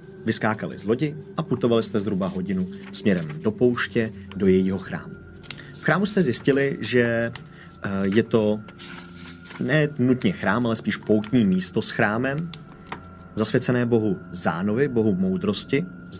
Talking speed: 135 wpm